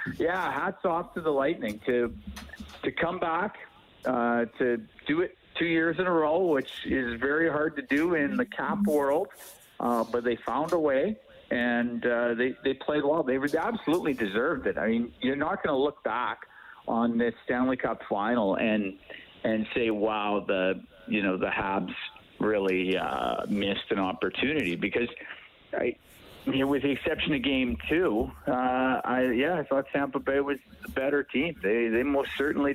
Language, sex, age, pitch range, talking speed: English, male, 50-69, 120-150 Hz, 175 wpm